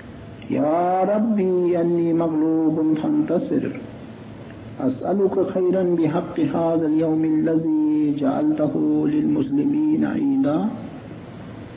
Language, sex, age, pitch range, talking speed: English, male, 60-79, 160-270 Hz, 70 wpm